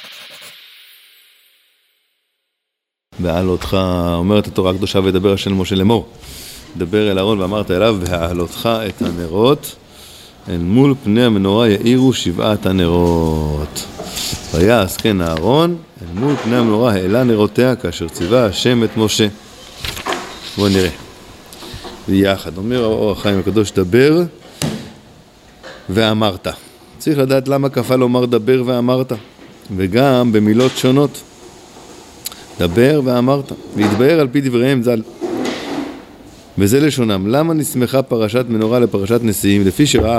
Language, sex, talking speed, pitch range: Hebrew, male, 110 wpm, 100-125 Hz